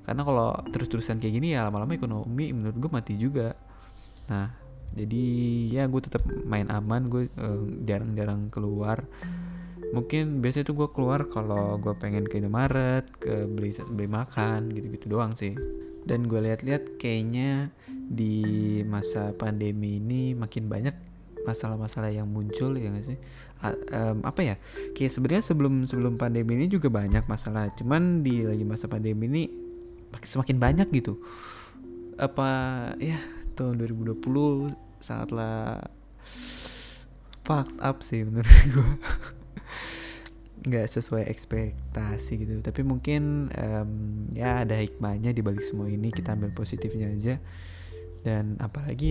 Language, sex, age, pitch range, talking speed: Indonesian, male, 20-39, 105-130 Hz, 130 wpm